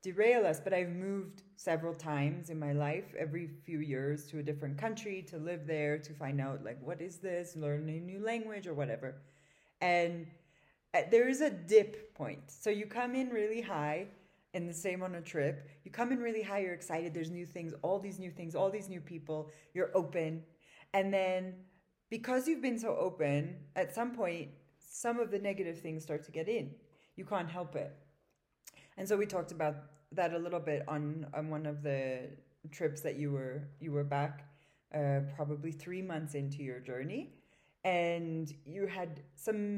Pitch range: 150-195 Hz